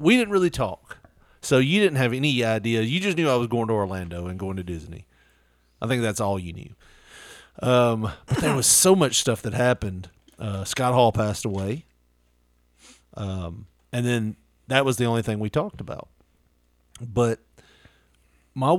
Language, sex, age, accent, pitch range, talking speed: English, male, 40-59, American, 90-130 Hz, 175 wpm